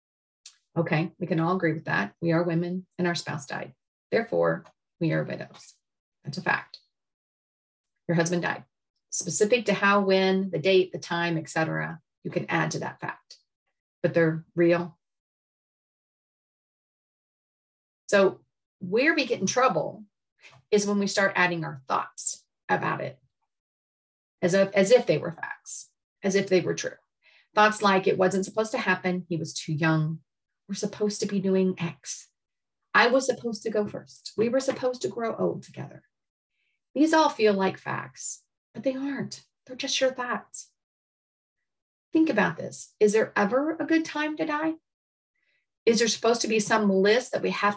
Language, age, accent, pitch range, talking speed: English, 40-59, American, 170-230 Hz, 165 wpm